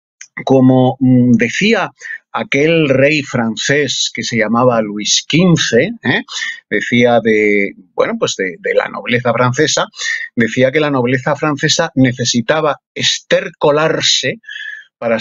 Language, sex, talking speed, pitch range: Spanish, male, 105 wpm, 130-195 Hz